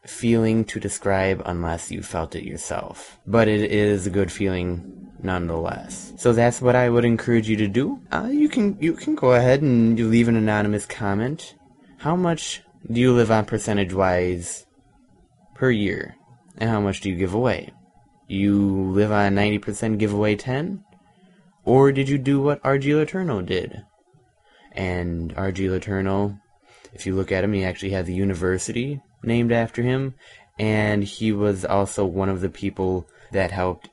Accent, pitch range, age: American, 95-125 Hz, 20-39